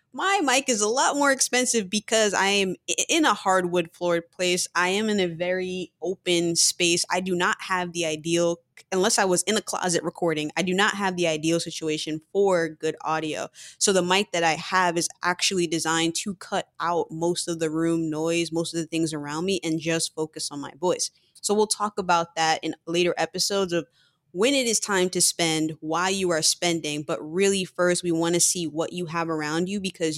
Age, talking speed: 20-39, 210 wpm